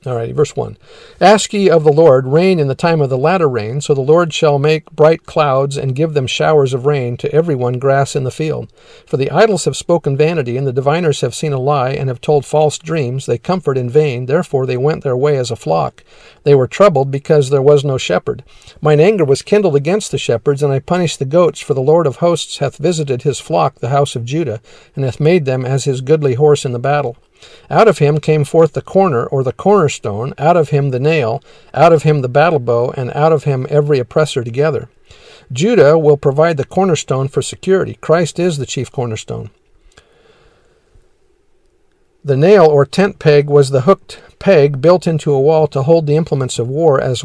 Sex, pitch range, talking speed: male, 135-165 Hz, 215 wpm